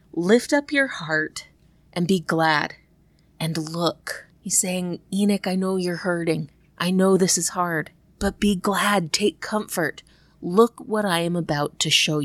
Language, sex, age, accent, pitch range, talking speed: English, female, 30-49, American, 165-200 Hz, 160 wpm